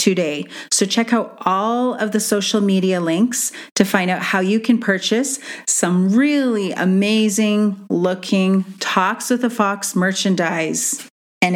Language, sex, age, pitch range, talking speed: English, female, 40-59, 190-240 Hz, 140 wpm